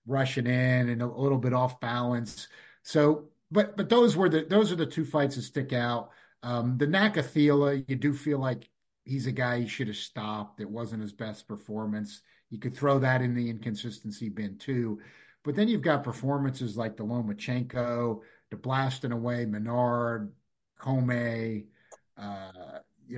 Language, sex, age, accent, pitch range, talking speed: English, male, 50-69, American, 110-135 Hz, 165 wpm